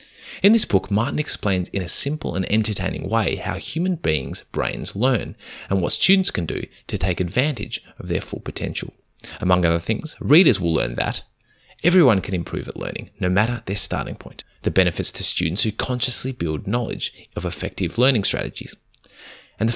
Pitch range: 90-125 Hz